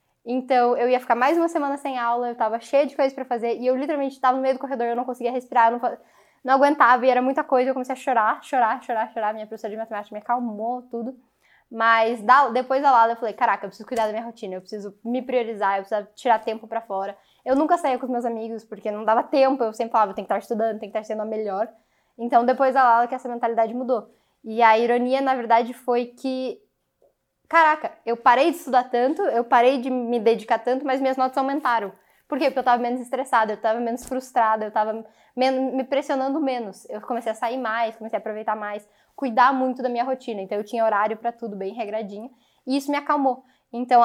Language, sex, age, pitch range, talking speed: Portuguese, female, 10-29, 220-260 Hz, 235 wpm